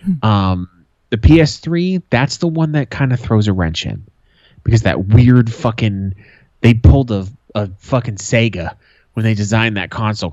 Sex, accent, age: male, American, 30-49